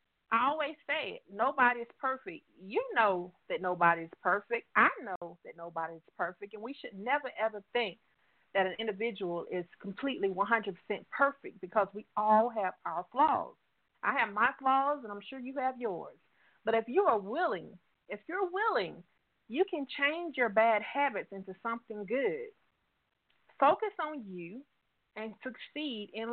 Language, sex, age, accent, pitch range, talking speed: English, female, 40-59, American, 200-280 Hz, 155 wpm